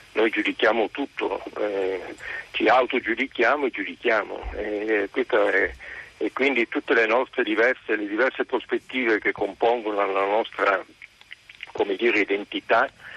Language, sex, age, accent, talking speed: Italian, male, 50-69, native, 120 wpm